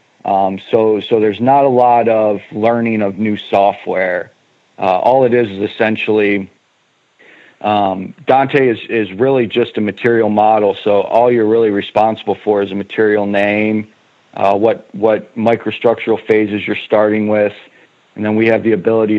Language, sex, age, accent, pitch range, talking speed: English, male, 40-59, American, 100-115 Hz, 160 wpm